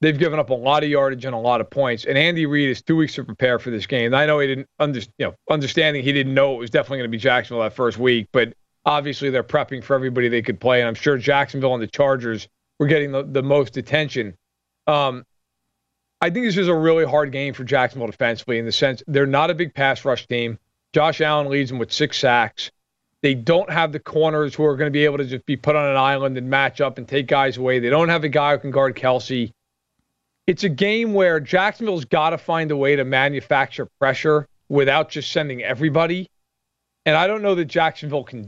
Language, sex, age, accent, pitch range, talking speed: English, male, 40-59, American, 130-160 Hz, 235 wpm